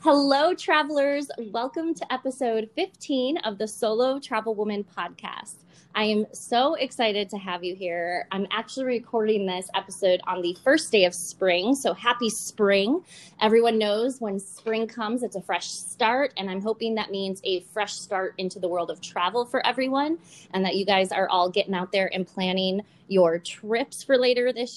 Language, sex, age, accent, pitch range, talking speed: English, female, 20-39, American, 175-235 Hz, 180 wpm